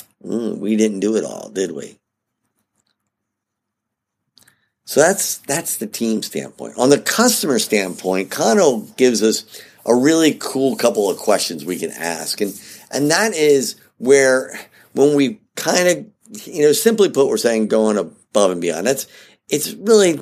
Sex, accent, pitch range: male, American, 110-155 Hz